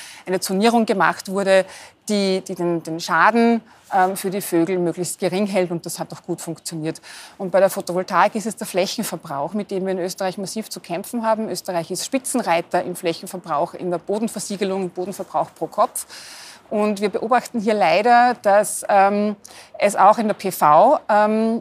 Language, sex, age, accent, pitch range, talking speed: German, female, 30-49, German, 175-215 Hz, 180 wpm